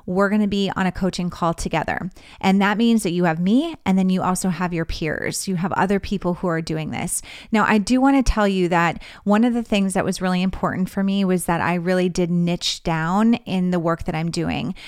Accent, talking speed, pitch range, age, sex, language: American, 240 wpm, 175-205 Hz, 30-49, female, English